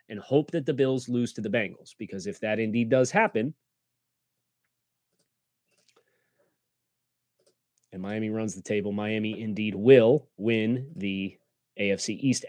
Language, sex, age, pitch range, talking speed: English, male, 30-49, 115-145 Hz, 130 wpm